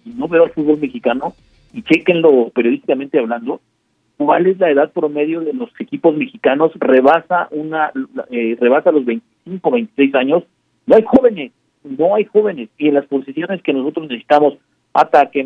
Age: 50-69